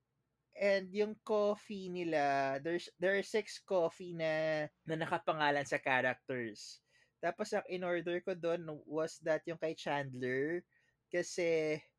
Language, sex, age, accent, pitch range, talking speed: Filipino, male, 20-39, native, 145-185 Hz, 125 wpm